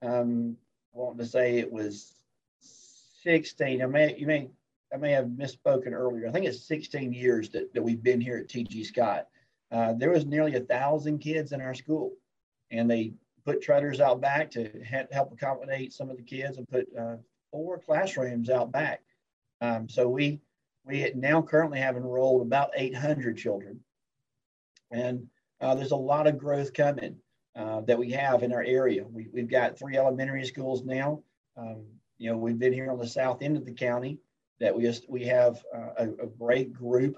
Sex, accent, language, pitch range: male, American, English, 120-140 Hz